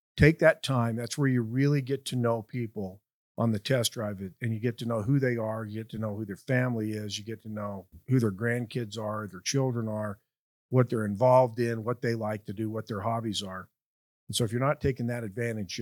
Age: 50-69